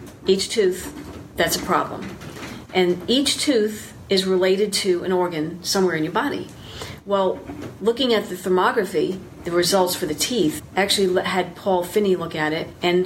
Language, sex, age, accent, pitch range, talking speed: English, female, 40-59, American, 175-210 Hz, 160 wpm